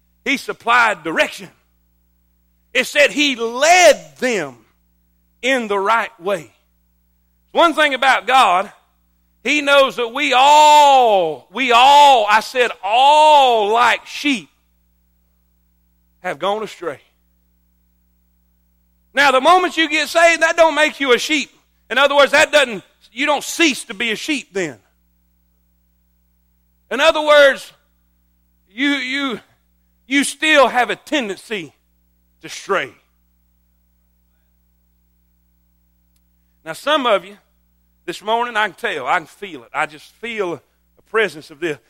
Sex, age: male, 40-59